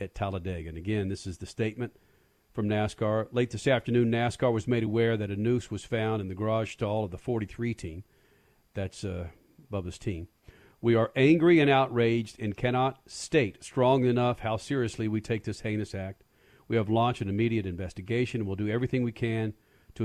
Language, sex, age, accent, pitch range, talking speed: English, male, 50-69, American, 105-125 Hz, 190 wpm